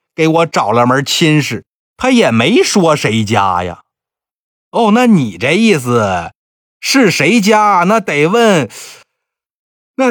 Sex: male